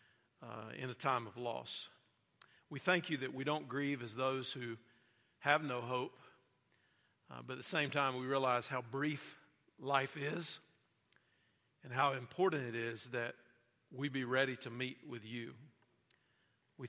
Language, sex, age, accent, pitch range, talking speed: English, male, 40-59, American, 120-145 Hz, 160 wpm